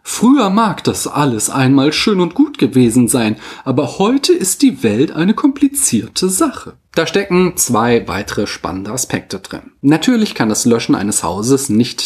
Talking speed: 160 wpm